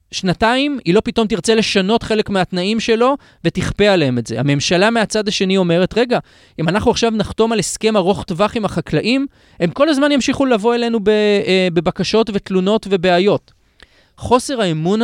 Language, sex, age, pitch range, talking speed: Hebrew, male, 30-49, 155-215 Hz, 155 wpm